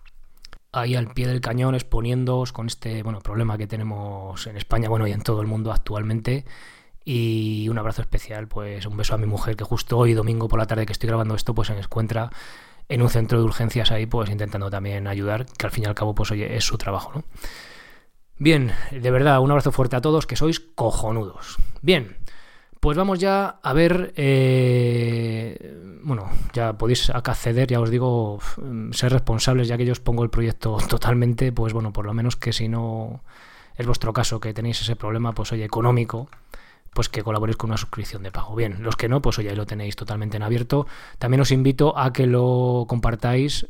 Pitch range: 110-125 Hz